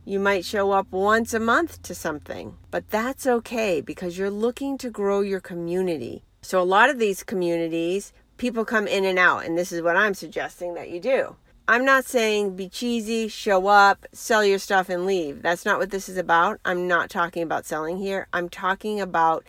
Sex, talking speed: female, 205 wpm